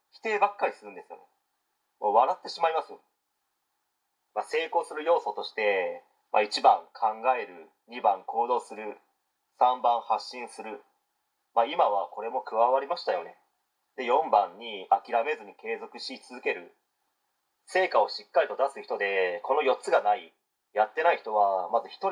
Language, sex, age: Japanese, male, 30-49